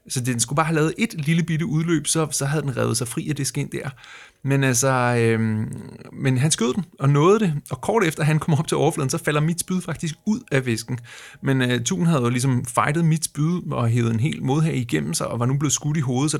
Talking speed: 255 wpm